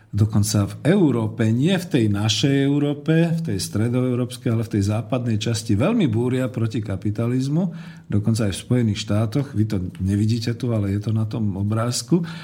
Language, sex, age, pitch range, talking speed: Slovak, male, 50-69, 110-135 Hz, 170 wpm